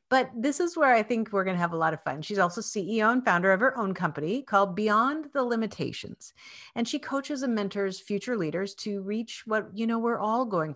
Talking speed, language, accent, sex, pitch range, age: 235 wpm, English, American, female, 180-260 Hz, 50-69